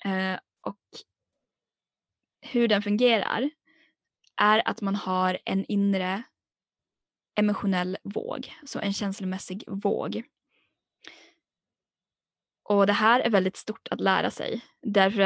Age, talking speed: 20-39, 105 wpm